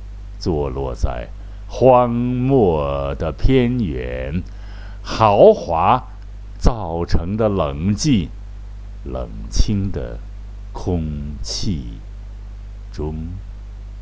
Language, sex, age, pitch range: Chinese, male, 60-79, 95-105 Hz